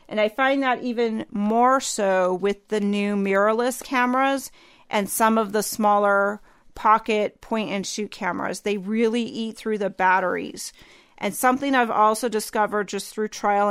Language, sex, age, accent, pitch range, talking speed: English, female, 40-59, American, 200-235 Hz, 160 wpm